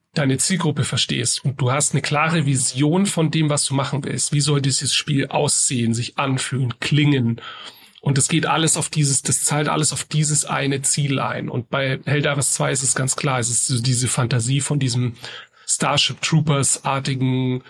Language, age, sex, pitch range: German, 40-59, male, 130-150 Hz